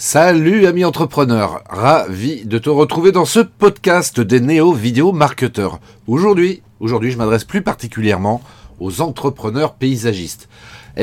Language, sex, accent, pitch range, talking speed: French, male, French, 100-140 Hz, 125 wpm